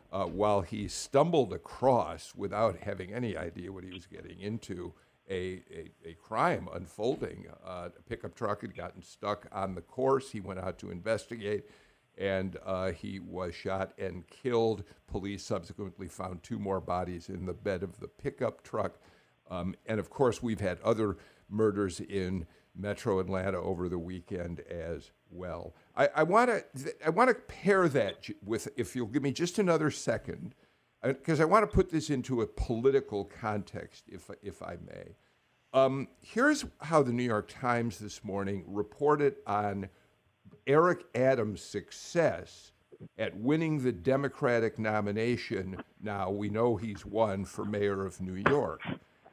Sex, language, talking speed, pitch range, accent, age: male, English, 155 wpm, 95-120 Hz, American, 50-69